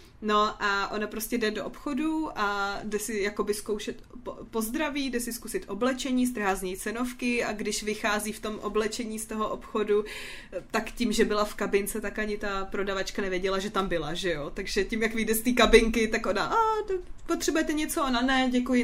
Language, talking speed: Czech, 190 wpm